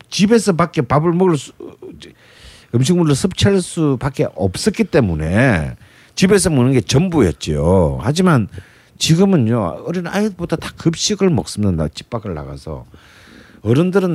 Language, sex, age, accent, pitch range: Korean, male, 50-69, native, 105-170 Hz